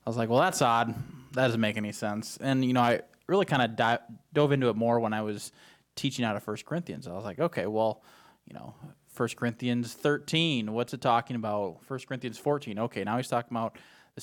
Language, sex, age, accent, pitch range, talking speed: English, male, 20-39, American, 110-130 Hz, 225 wpm